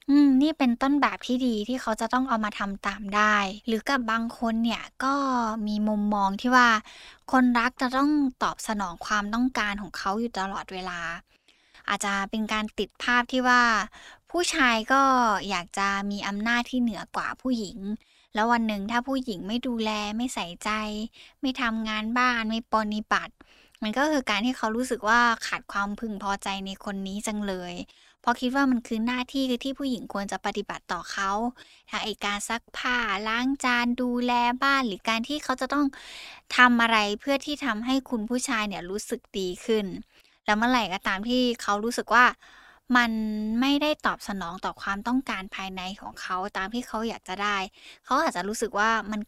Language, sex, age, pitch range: Thai, female, 10-29, 205-250 Hz